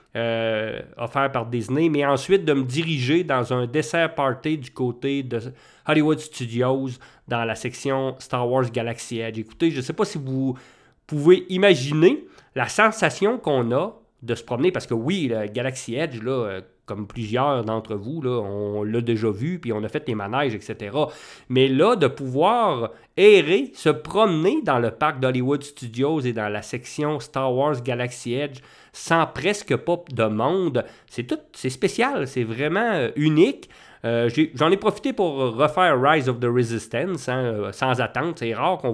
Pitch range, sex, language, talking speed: 120-155 Hz, male, English, 180 wpm